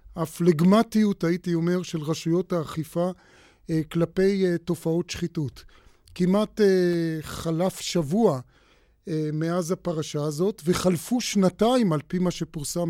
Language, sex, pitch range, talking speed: Hebrew, male, 155-185 Hz, 100 wpm